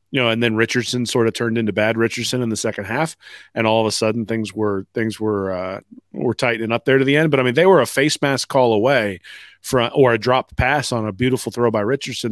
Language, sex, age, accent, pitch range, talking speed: English, male, 30-49, American, 110-135 Hz, 260 wpm